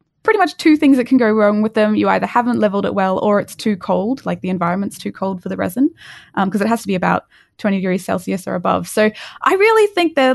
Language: English